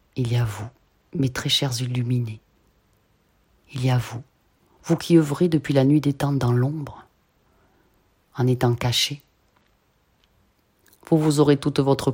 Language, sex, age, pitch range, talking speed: French, female, 30-49, 110-140 Hz, 150 wpm